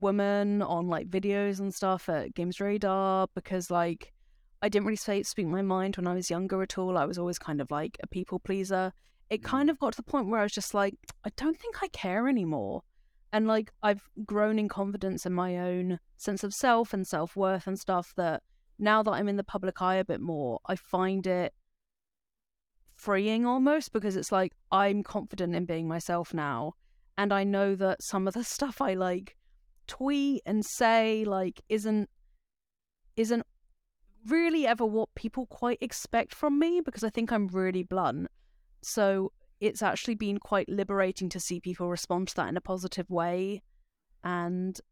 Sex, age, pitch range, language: female, 20-39, 180-215 Hz, English